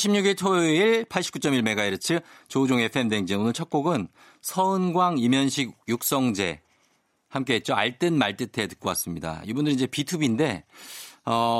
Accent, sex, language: native, male, Korean